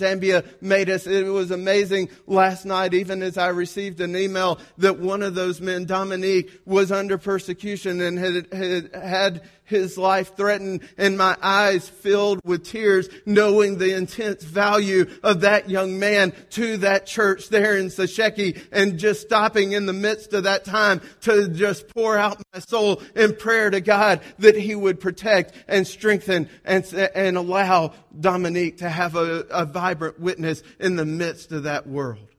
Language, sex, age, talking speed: English, male, 40-59, 170 wpm